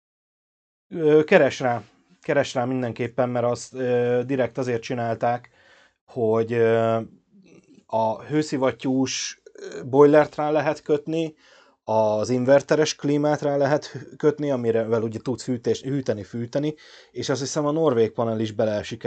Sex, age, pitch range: male, 30-49, 115-135 Hz